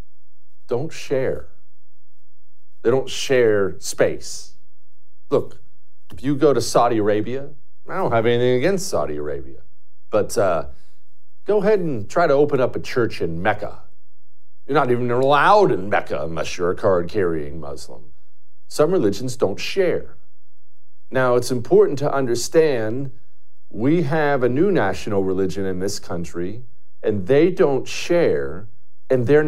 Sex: male